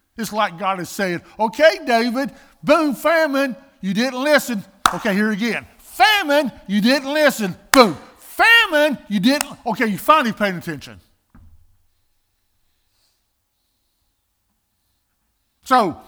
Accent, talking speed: American, 110 wpm